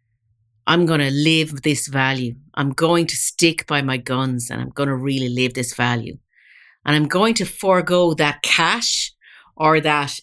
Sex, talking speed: female, 165 wpm